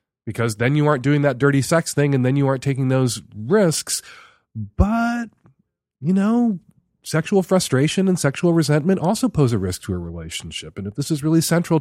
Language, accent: English, American